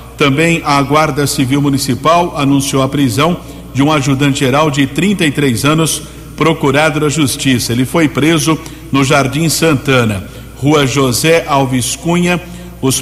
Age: 60-79